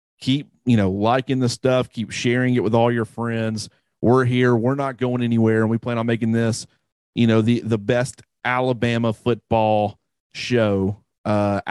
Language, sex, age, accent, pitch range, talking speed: English, male, 40-59, American, 105-120 Hz, 175 wpm